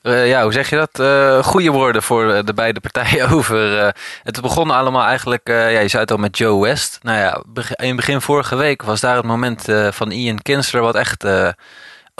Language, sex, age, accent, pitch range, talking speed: Dutch, male, 20-39, Dutch, 105-130 Hz, 225 wpm